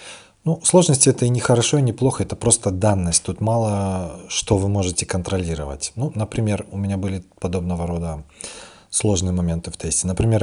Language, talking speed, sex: Russian, 175 wpm, male